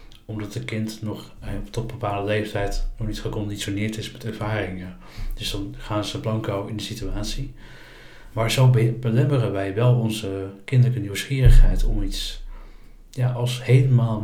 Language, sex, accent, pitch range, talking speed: Dutch, male, Dutch, 105-125 Hz, 145 wpm